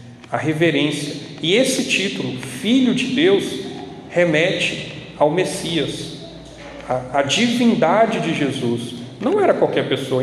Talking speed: 115 wpm